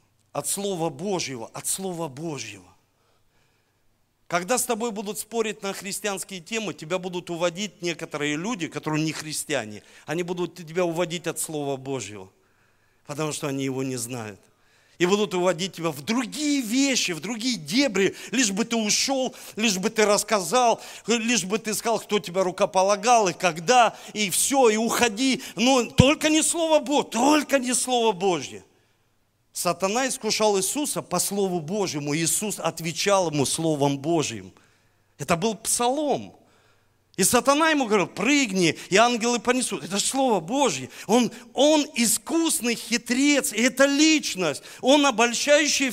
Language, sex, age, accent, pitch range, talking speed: Russian, male, 40-59, native, 160-240 Hz, 140 wpm